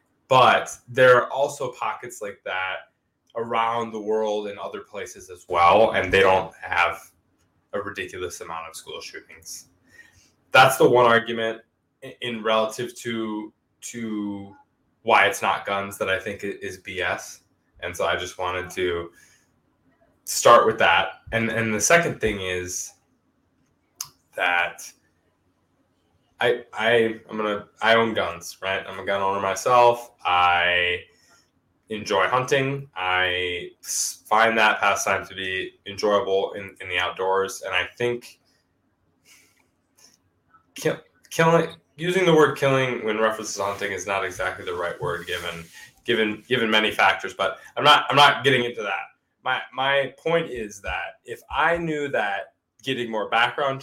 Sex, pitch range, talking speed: male, 90-120 Hz, 145 wpm